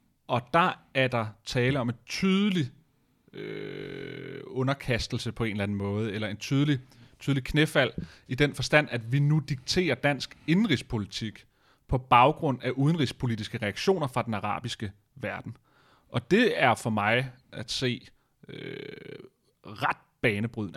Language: Danish